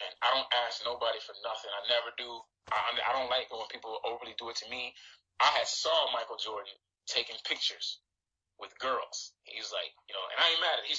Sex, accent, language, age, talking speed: male, American, English, 20-39, 230 wpm